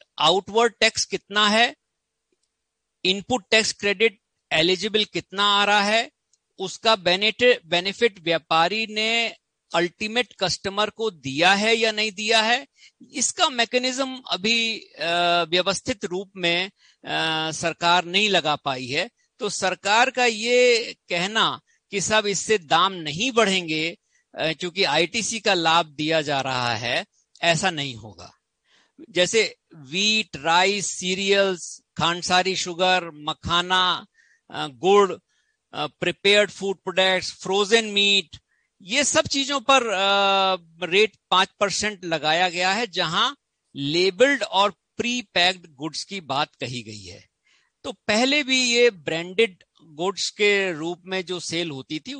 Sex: male